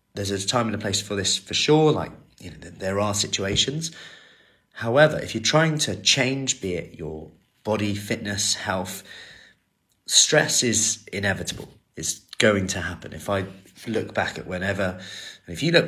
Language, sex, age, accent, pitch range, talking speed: English, male, 30-49, British, 90-110 Hz, 170 wpm